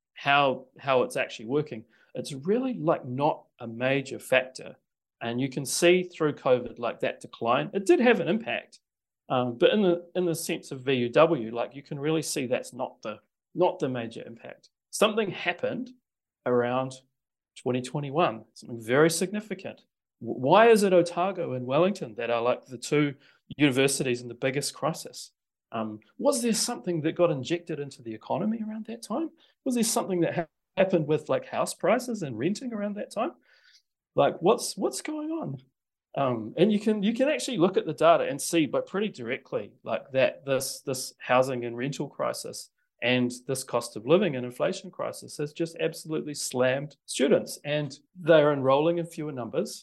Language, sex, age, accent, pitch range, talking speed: English, male, 40-59, Australian, 130-185 Hz, 180 wpm